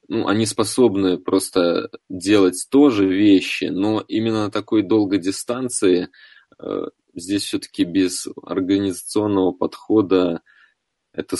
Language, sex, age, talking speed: Russian, male, 20-39, 105 wpm